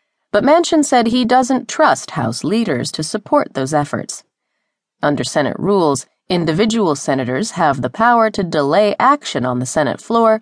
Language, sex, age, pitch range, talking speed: English, female, 30-49, 150-225 Hz, 155 wpm